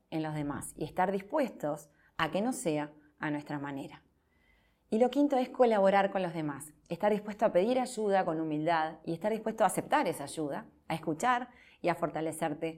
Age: 30-49